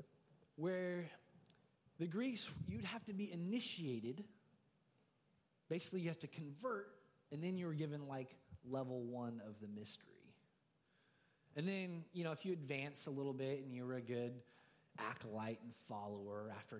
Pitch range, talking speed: 135-190 Hz, 155 wpm